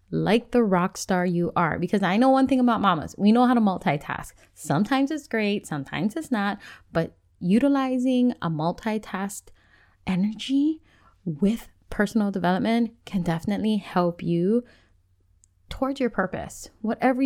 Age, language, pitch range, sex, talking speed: 20-39, English, 175-230 Hz, female, 140 wpm